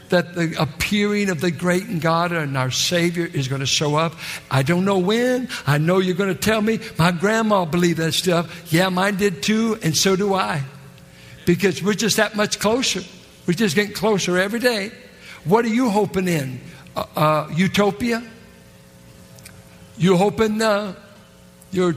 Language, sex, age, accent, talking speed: English, male, 60-79, American, 175 wpm